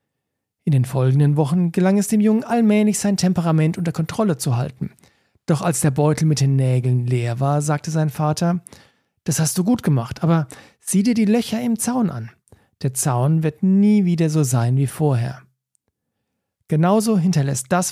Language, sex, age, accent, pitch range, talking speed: German, male, 40-59, German, 140-185 Hz, 175 wpm